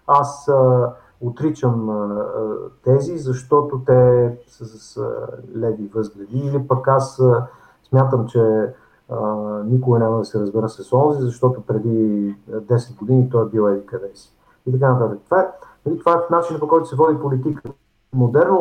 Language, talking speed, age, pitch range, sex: English, 165 wpm, 50-69, 115-140 Hz, male